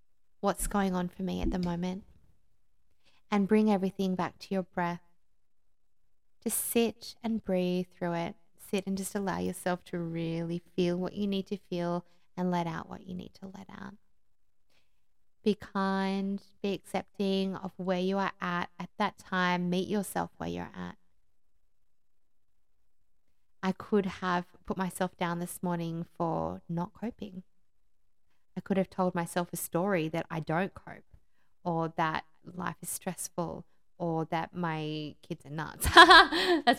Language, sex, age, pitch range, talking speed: English, female, 20-39, 170-200 Hz, 155 wpm